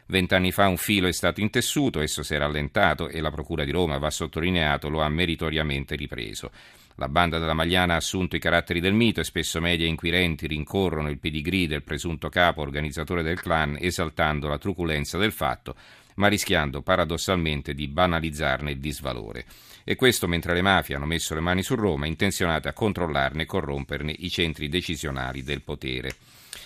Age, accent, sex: 40-59, native, male